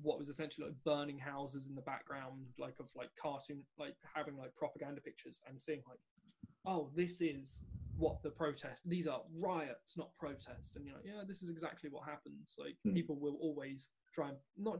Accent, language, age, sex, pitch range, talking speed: British, English, 20-39, male, 140-180 Hz, 195 wpm